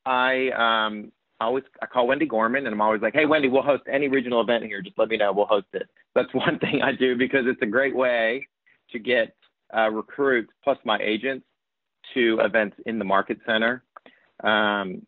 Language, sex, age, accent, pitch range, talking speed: English, male, 40-59, American, 105-125 Hz, 200 wpm